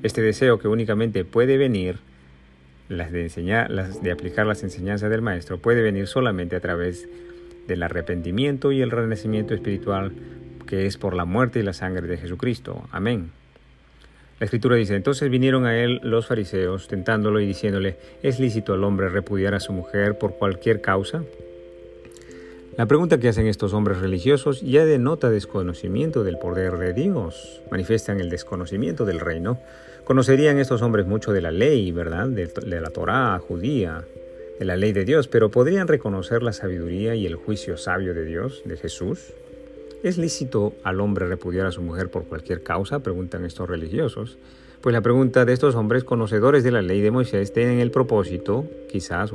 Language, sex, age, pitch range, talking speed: Spanish, male, 50-69, 90-120 Hz, 170 wpm